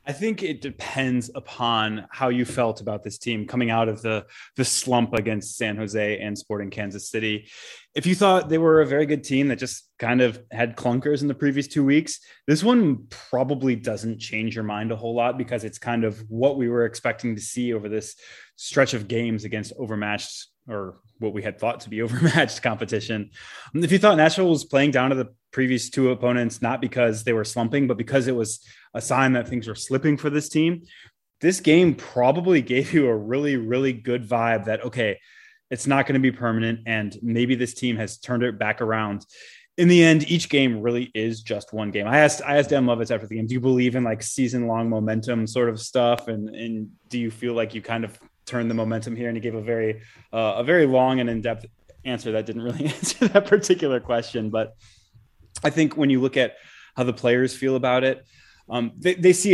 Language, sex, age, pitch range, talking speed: English, male, 20-39, 110-135 Hz, 215 wpm